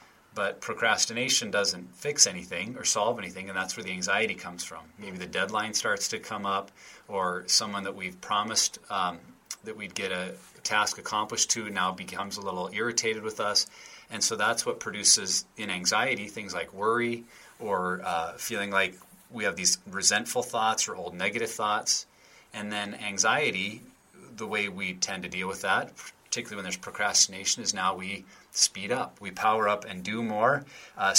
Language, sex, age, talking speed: English, male, 30-49, 175 wpm